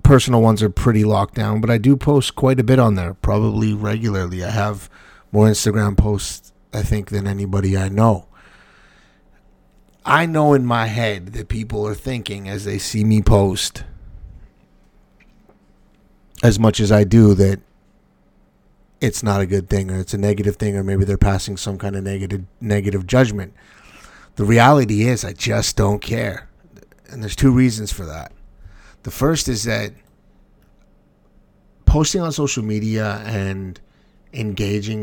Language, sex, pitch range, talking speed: English, male, 100-115 Hz, 155 wpm